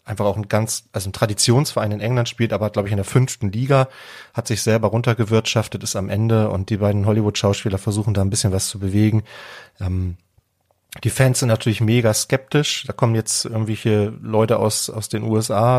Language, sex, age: German, male, 30-49